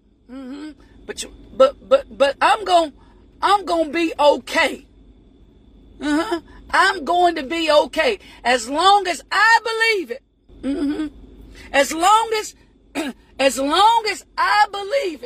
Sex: female